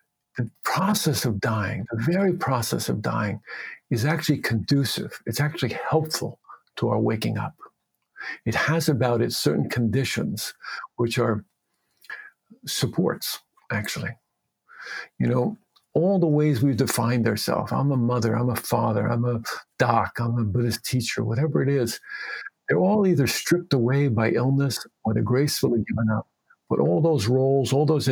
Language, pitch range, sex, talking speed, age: English, 115-155 Hz, male, 150 wpm, 50-69